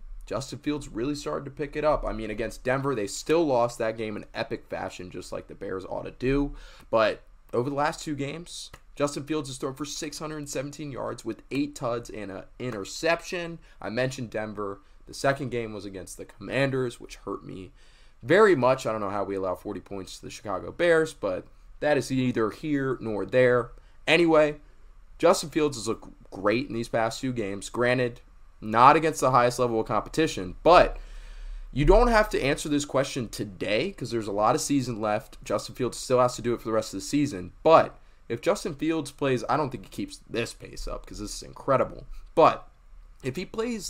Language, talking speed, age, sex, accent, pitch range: English, 205 wpm, 20-39, male, American, 110-150 Hz